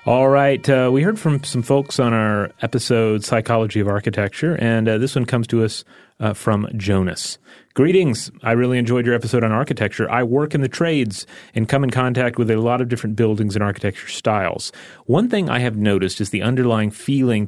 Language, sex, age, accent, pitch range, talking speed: English, male, 30-49, American, 105-130 Hz, 205 wpm